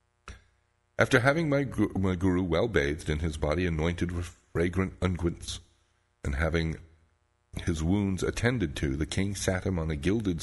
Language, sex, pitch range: English, male, 80-95 Hz